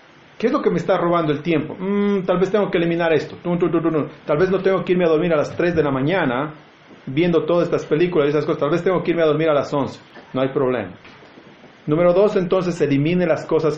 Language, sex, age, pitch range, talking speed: Spanish, male, 40-59, 145-185 Hz, 245 wpm